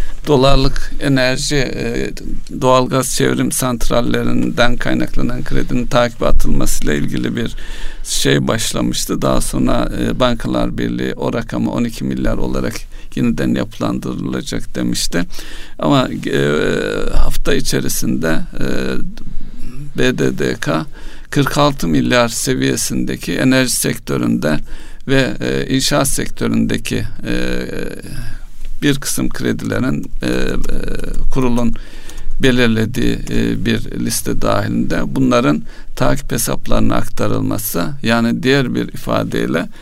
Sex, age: male, 60-79